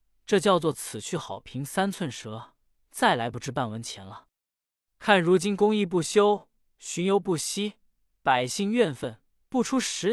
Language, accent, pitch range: Chinese, native, 135-210 Hz